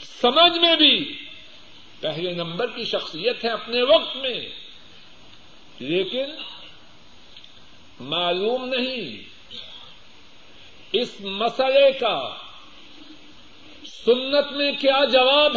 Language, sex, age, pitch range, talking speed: Urdu, male, 50-69, 190-285 Hz, 80 wpm